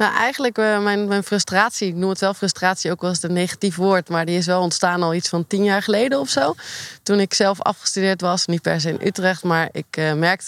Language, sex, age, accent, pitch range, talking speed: Dutch, female, 20-39, Dutch, 165-200 Hz, 250 wpm